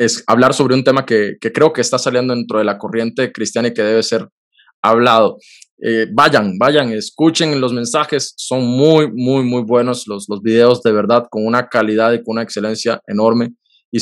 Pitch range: 130-170 Hz